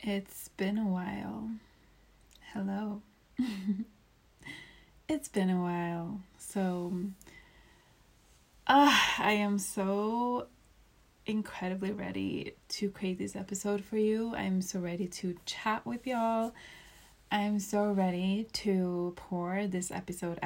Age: 20-39